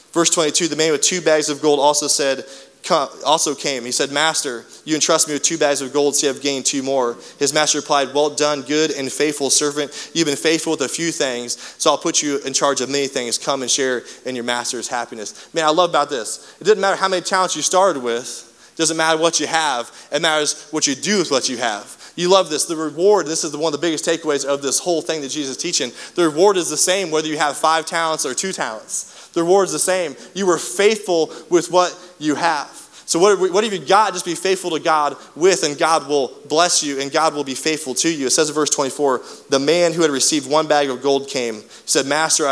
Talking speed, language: 255 wpm, English